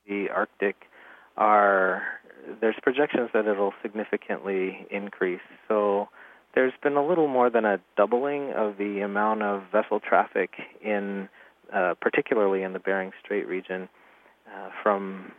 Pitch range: 95-110 Hz